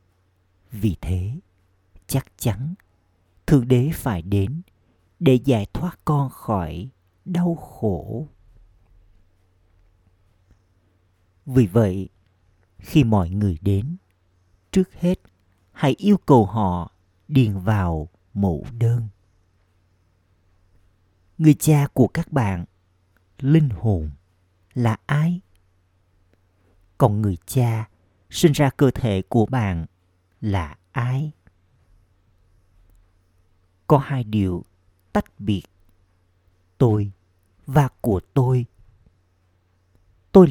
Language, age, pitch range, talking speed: Vietnamese, 50-69, 90-120 Hz, 90 wpm